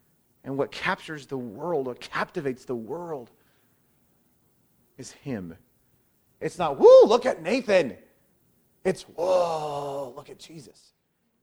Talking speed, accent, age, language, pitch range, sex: 115 wpm, American, 30-49, English, 140-200 Hz, male